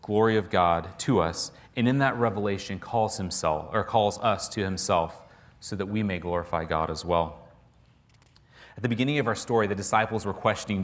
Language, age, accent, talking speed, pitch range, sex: English, 30-49, American, 190 wpm, 95-120 Hz, male